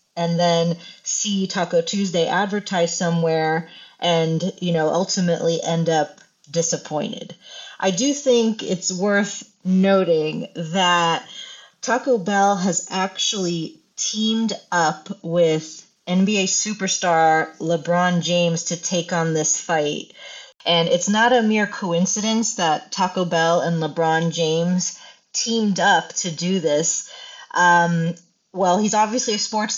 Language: English